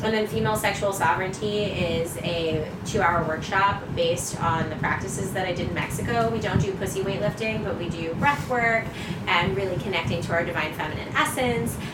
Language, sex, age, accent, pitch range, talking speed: English, female, 20-39, American, 160-195 Hz, 175 wpm